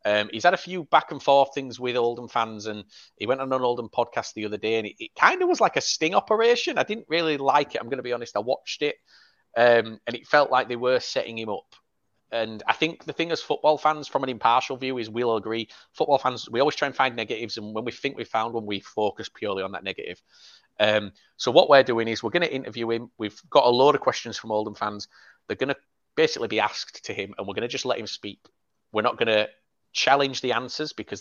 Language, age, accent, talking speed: English, 30-49, British, 260 wpm